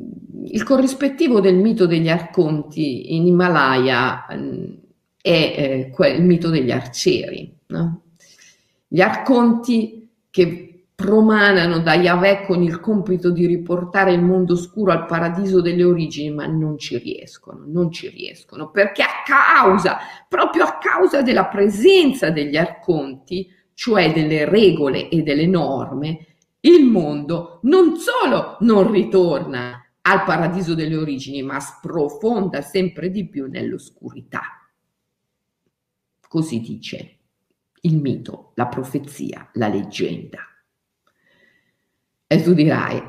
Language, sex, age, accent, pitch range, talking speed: Italian, female, 50-69, native, 160-205 Hz, 115 wpm